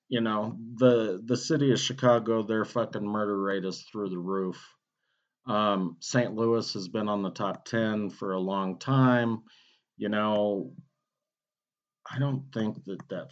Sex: male